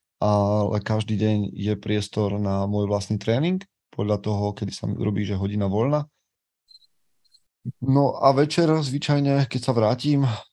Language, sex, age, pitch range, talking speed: Slovak, male, 20-39, 100-115 Hz, 140 wpm